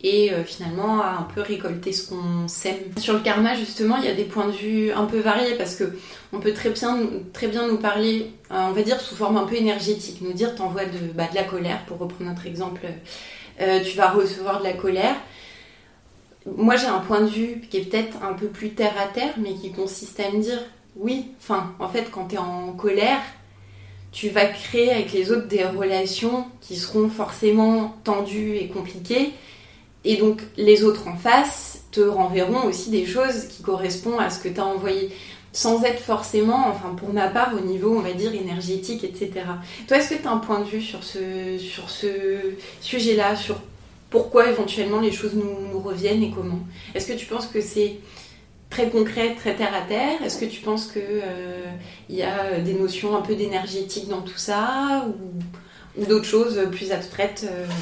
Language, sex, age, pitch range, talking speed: French, female, 20-39, 190-220 Hz, 205 wpm